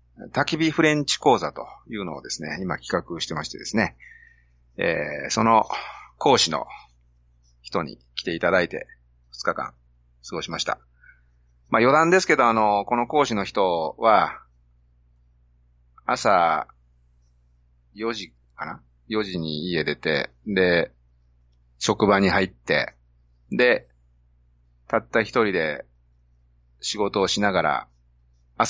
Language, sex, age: Japanese, male, 40-59